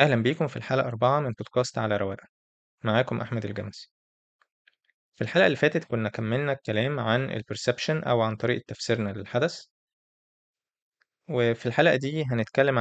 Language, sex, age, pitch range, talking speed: Arabic, male, 20-39, 110-130 Hz, 140 wpm